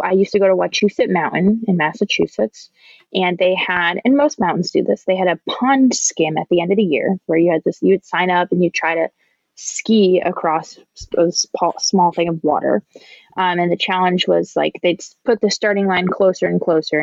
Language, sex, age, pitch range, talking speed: English, female, 20-39, 180-245 Hz, 215 wpm